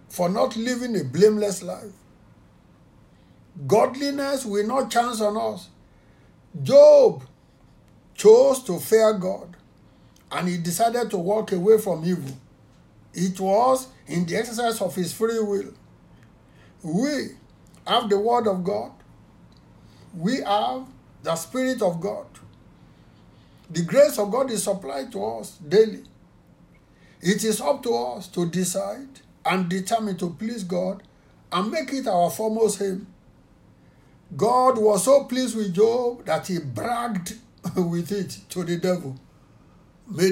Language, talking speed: English, 130 wpm